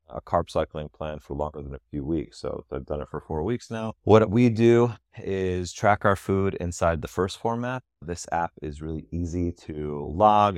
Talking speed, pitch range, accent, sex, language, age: 205 wpm, 75-90 Hz, American, male, English, 30-49